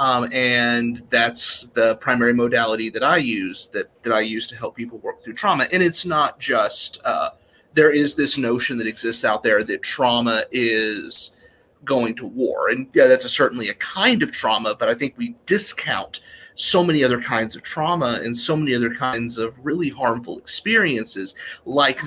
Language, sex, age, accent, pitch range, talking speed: English, male, 30-49, American, 120-140 Hz, 185 wpm